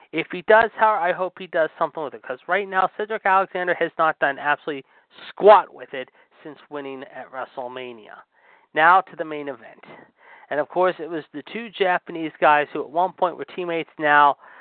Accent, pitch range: American, 145-185 Hz